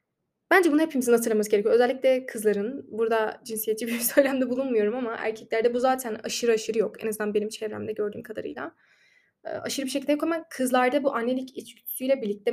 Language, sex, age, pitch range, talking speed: Turkish, female, 10-29, 220-285 Hz, 170 wpm